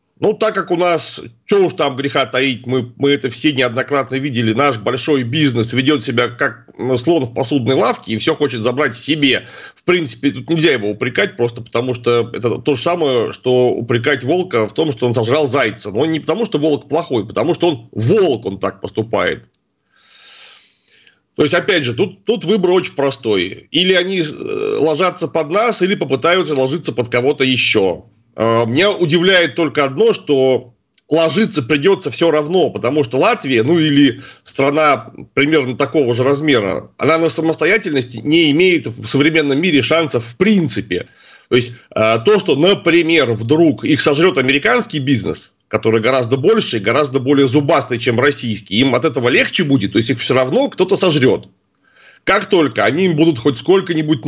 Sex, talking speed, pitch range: male, 170 wpm, 125-165 Hz